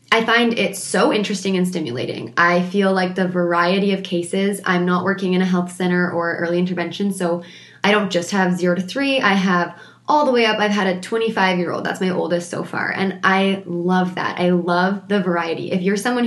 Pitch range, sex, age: 175-210 Hz, female, 20-39